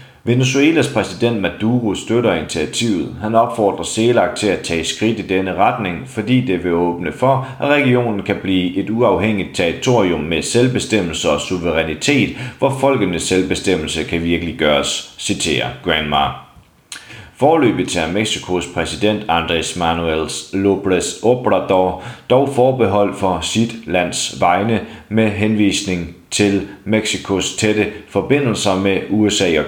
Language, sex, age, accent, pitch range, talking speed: Danish, male, 30-49, native, 85-115 Hz, 125 wpm